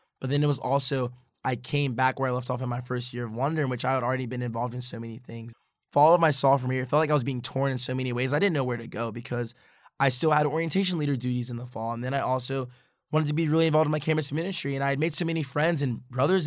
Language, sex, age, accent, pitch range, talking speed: English, male, 20-39, American, 125-150 Hz, 305 wpm